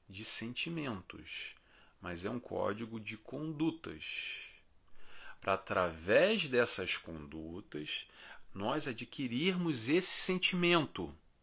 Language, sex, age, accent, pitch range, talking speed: Portuguese, male, 40-59, Brazilian, 90-125 Hz, 85 wpm